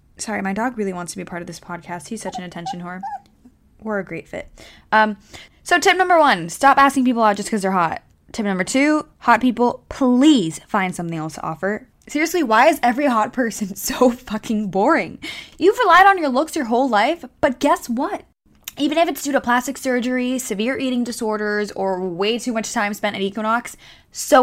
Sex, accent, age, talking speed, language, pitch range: female, American, 10-29, 205 wpm, English, 195-255 Hz